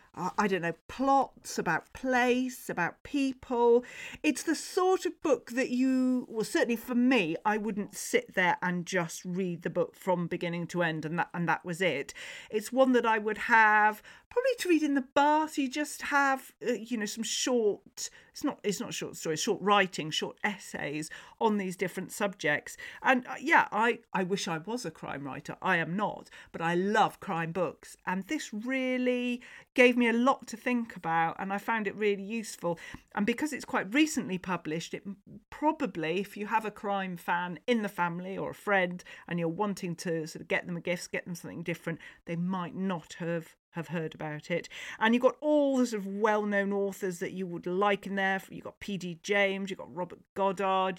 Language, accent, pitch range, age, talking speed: English, British, 180-240 Hz, 40-59, 200 wpm